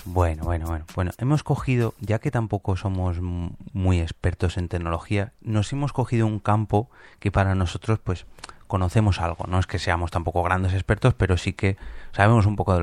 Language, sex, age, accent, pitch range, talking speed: Spanish, male, 30-49, Spanish, 90-110 Hz, 185 wpm